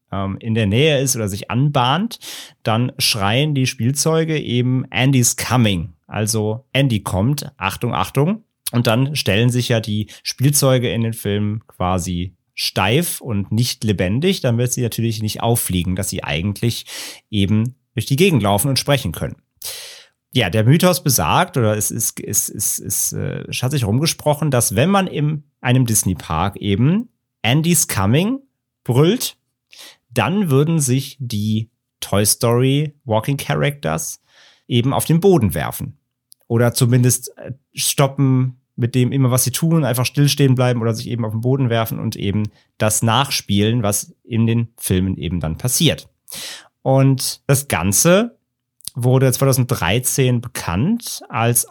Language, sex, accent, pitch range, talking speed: German, male, German, 110-135 Hz, 140 wpm